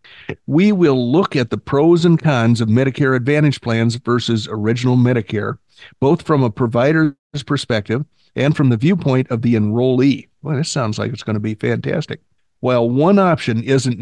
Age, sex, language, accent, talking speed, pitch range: 50-69, male, English, American, 170 wpm, 115-140 Hz